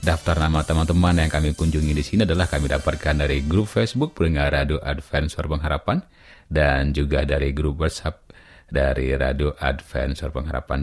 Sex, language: male, Indonesian